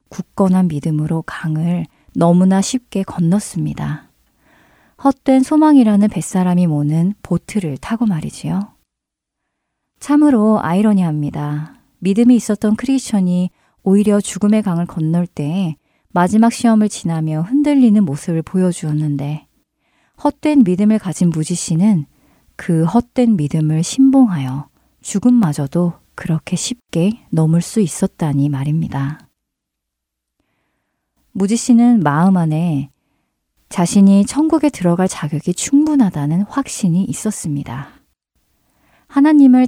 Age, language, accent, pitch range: 40-59, Korean, native, 155-220 Hz